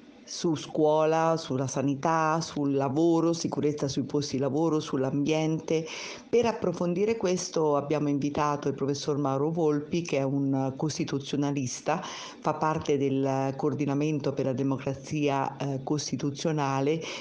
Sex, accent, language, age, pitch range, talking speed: female, native, Italian, 50-69, 140-160 Hz, 120 wpm